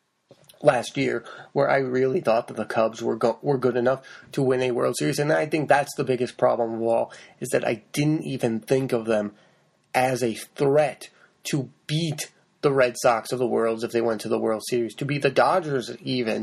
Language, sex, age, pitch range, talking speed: English, male, 30-49, 120-150 Hz, 215 wpm